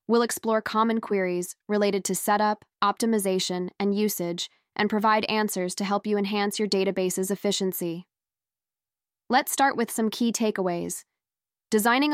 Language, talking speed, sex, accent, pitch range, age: English, 135 wpm, female, American, 195-225 Hz, 10-29